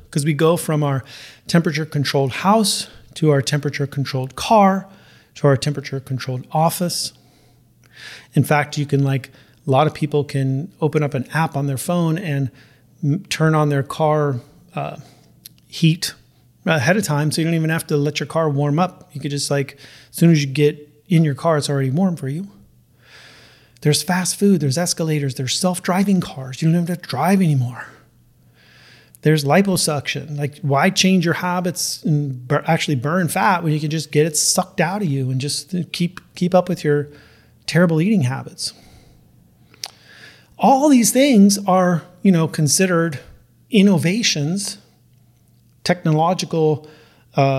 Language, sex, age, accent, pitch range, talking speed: English, male, 30-49, American, 140-180 Hz, 165 wpm